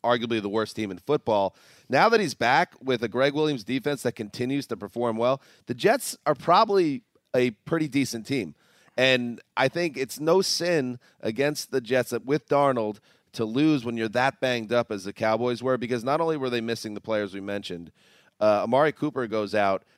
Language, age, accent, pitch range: English, 30-49, American, 105-130 Hz